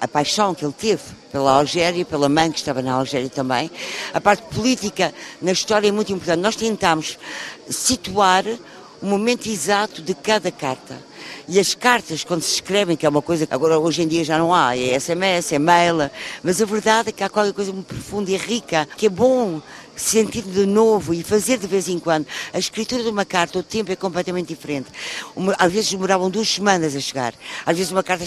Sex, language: female, Portuguese